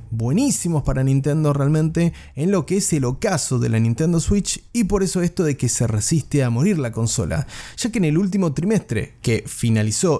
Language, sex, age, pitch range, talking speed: Spanish, male, 30-49, 140-190 Hz, 200 wpm